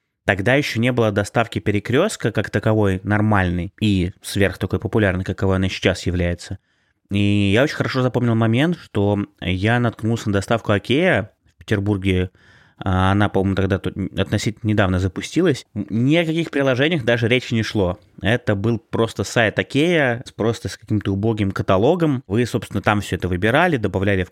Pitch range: 100-120 Hz